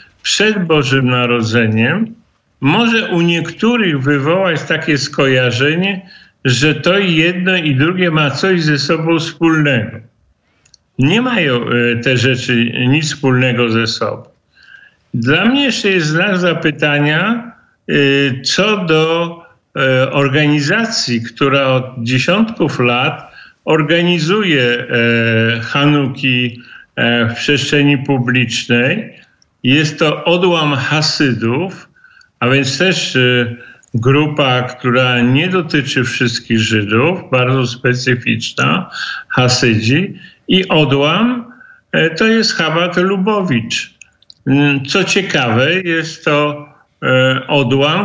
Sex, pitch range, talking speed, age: male, 125-170 Hz, 95 wpm, 50-69